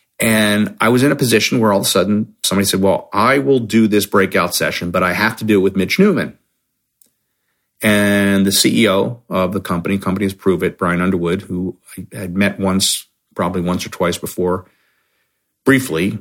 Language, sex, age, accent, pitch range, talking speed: English, male, 40-59, American, 95-130 Hz, 190 wpm